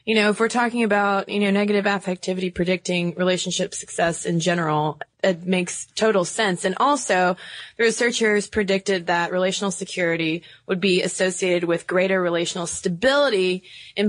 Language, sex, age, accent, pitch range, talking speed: English, female, 20-39, American, 170-195 Hz, 150 wpm